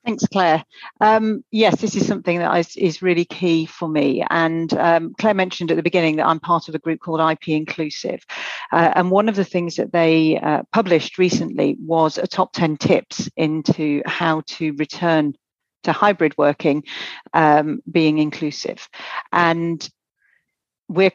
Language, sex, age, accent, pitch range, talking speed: English, female, 40-59, British, 155-185 Hz, 165 wpm